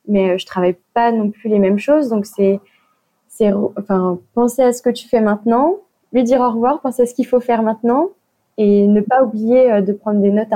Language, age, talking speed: French, 20-39, 225 wpm